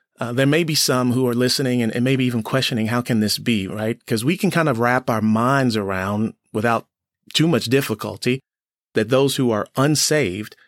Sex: male